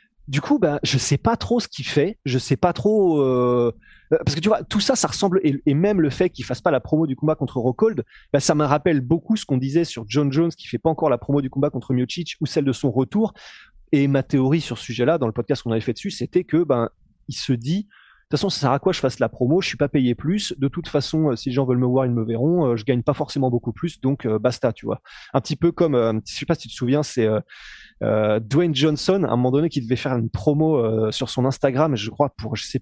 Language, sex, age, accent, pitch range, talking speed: French, male, 20-39, French, 120-160 Hz, 280 wpm